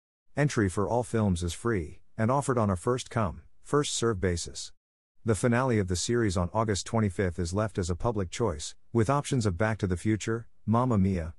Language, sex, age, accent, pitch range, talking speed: English, male, 50-69, American, 90-115 Hz, 195 wpm